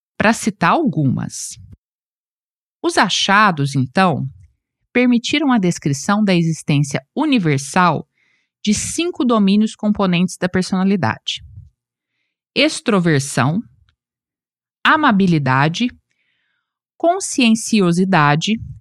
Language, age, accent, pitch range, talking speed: Portuguese, 50-69, Brazilian, 170-240 Hz, 65 wpm